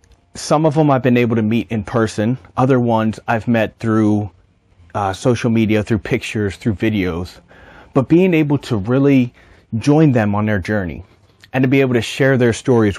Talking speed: 185 wpm